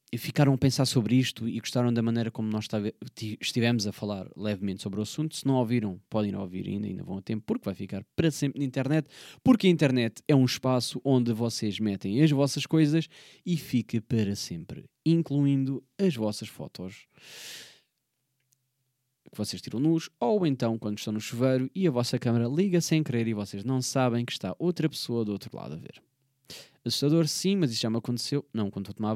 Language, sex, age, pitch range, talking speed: Portuguese, male, 20-39, 105-135 Hz, 200 wpm